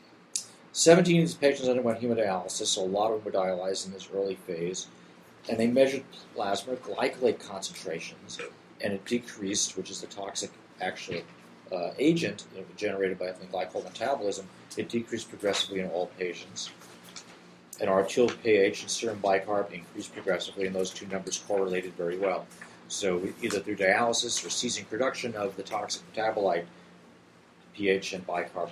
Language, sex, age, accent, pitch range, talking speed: English, male, 40-59, American, 90-110 Hz, 150 wpm